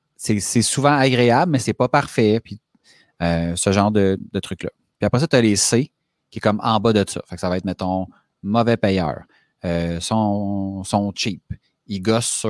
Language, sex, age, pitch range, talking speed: French, male, 30-49, 95-120 Hz, 205 wpm